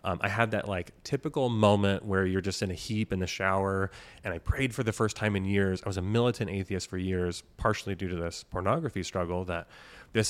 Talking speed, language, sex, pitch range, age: 235 wpm, English, male, 90-105 Hz, 30-49